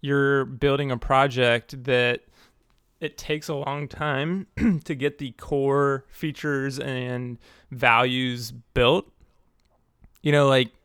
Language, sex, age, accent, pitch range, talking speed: English, male, 20-39, American, 120-140 Hz, 115 wpm